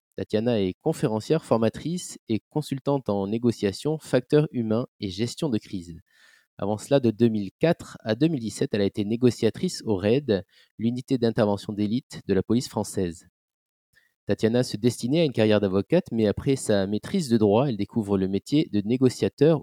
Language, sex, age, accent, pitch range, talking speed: French, male, 30-49, French, 100-130 Hz, 160 wpm